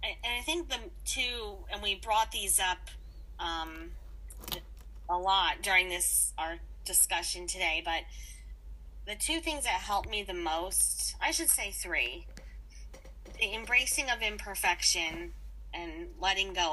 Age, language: 30-49, English